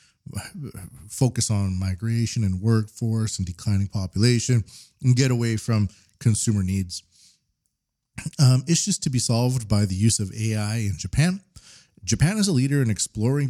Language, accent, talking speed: English, American, 140 wpm